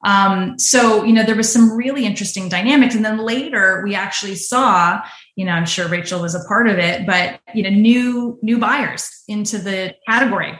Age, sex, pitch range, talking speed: 20-39, female, 180-225 Hz, 200 wpm